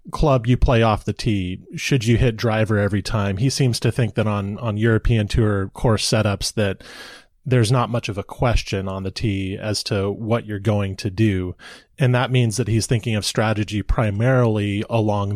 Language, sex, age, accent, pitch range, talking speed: English, male, 30-49, American, 100-120 Hz, 195 wpm